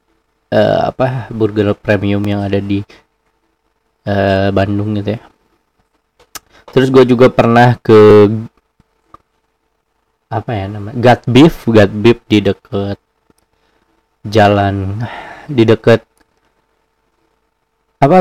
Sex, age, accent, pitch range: male, 20-39, native, 100-115 Hz